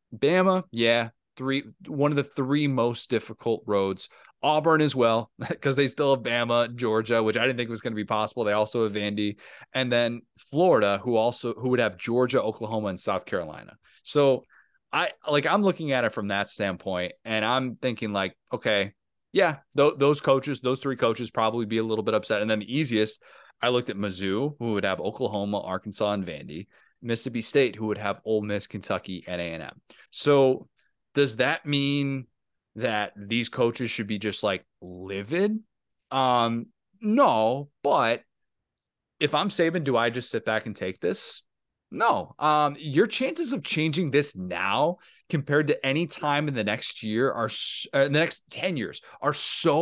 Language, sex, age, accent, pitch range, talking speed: English, male, 30-49, American, 105-145 Hz, 180 wpm